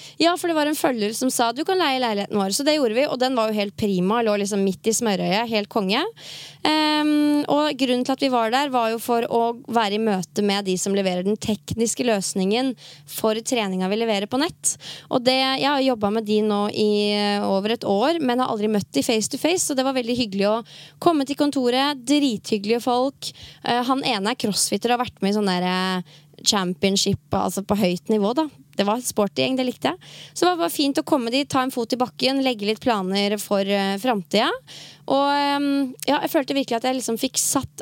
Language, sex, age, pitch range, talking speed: English, female, 20-39, 205-265 Hz, 225 wpm